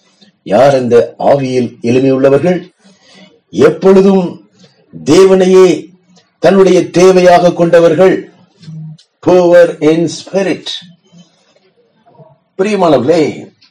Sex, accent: male, native